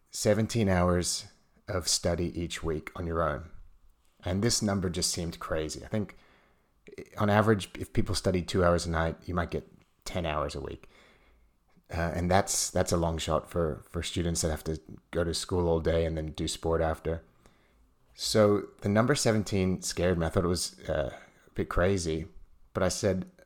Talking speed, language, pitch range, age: 180 wpm, English, 80-95 Hz, 30-49